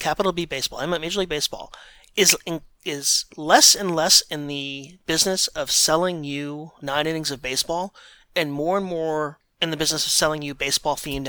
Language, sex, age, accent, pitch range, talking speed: English, male, 30-49, American, 130-160 Hz, 180 wpm